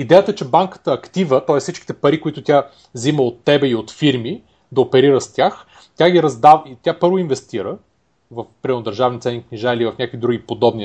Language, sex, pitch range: Bulgarian, male, 125-160 Hz